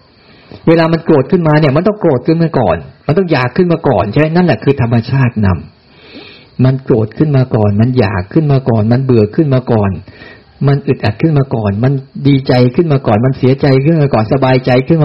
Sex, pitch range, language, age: male, 115-145 Hz, Thai, 60-79